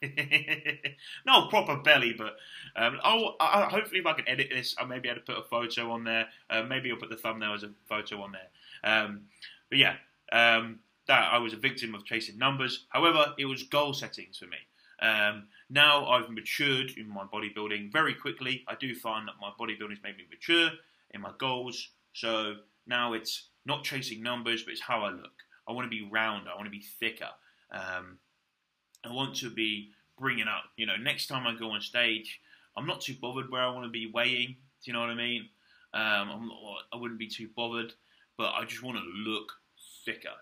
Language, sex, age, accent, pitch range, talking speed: English, male, 20-39, British, 110-130 Hz, 210 wpm